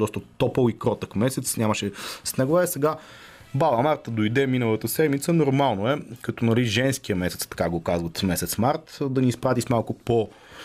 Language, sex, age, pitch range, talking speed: Bulgarian, male, 30-49, 105-130 Hz, 175 wpm